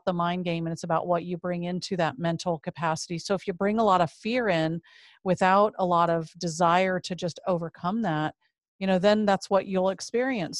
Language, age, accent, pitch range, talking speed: English, 40-59, American, 175-200 Hz, 215 wpm